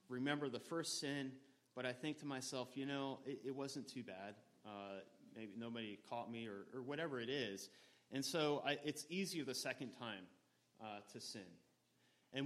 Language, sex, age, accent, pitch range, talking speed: English, male, 30-49, American, 125-160 Hz, 185 wpm